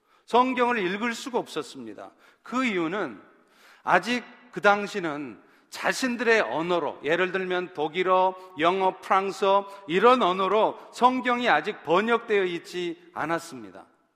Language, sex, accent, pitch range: Korean, male, native, 185-235 Hz